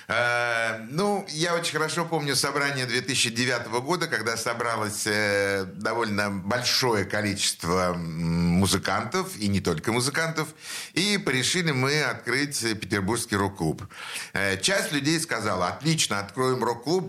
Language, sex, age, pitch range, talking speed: Russian, male, 60-79, 105-145 Hz, 105 wpm